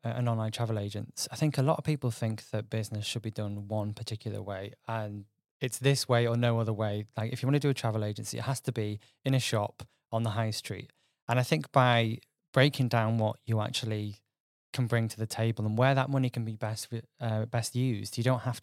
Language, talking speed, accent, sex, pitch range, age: English, 240 wpm, British, male, 110-125 Hz, 20-39